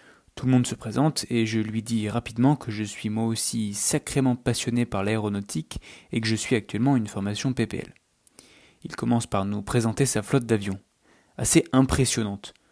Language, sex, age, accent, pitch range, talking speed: French, male, 20-39, French, 110-130 Hz, 175 wpm